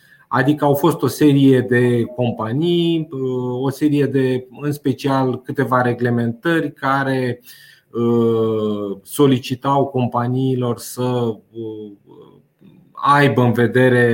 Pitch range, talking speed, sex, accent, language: 120-145 Hz, 90 wpm, male, native, Romanian